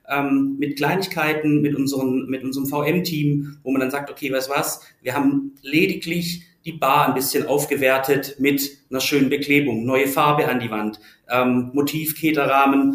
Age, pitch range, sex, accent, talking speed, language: 40-59, 130-160 Hz, male, German, 165 wpm, German